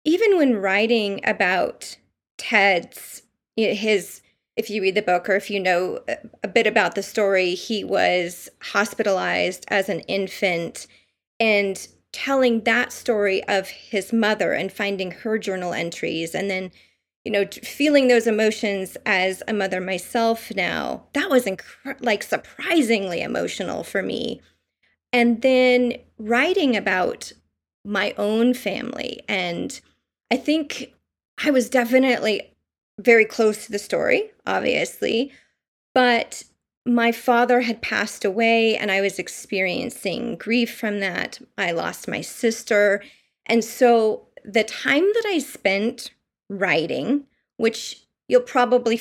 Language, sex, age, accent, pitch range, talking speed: English, female, 30-49, American, 195-245 Hz, 130 wpm